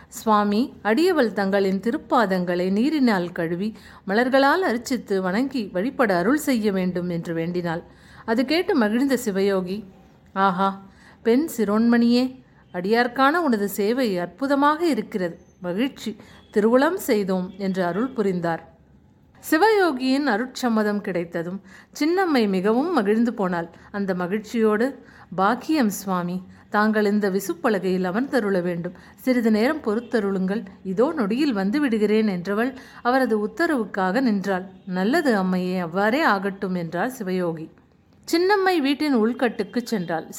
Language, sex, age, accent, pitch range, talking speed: Tamil, female, 50-69, native, 190-250 Hz, 105 wpm